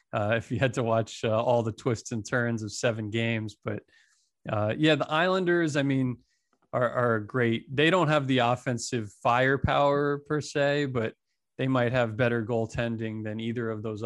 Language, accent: English, American